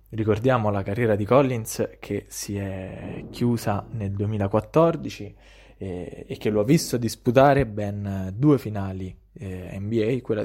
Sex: male